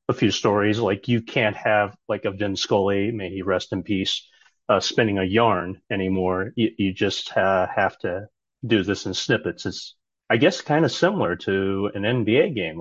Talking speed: 190 wpm